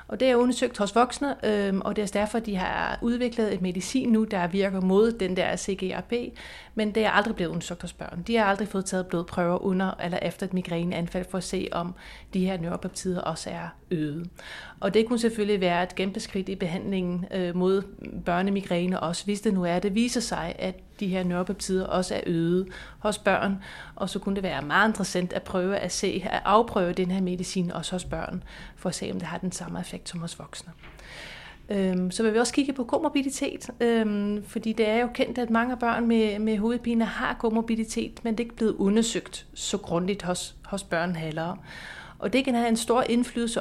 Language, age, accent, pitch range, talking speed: Danish, 30-49, native, 185-225 Hz, 210 wpm